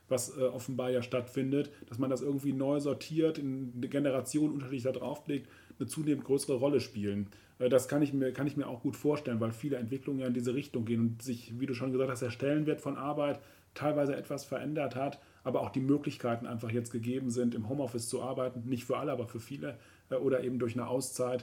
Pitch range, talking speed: 125-145 Hz, 215 wpm